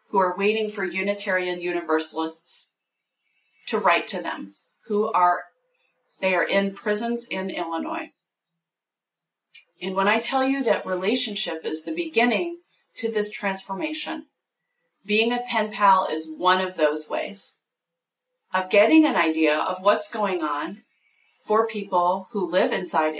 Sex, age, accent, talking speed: female, 30-49, American, 135 wpm